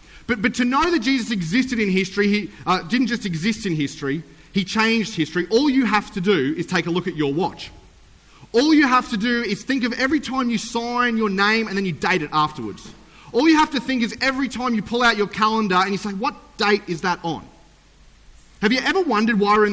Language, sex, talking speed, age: English, male, 240 wpm, 30-49